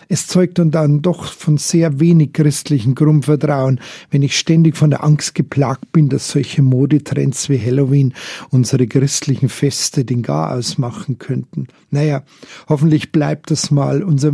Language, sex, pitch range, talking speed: German, male, 135-170 Hz, 150 wpm